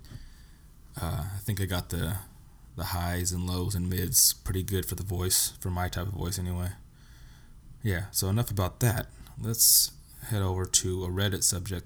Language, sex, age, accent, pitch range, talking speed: English, male, 20-39, American, 85-100 Hz, 175 wpm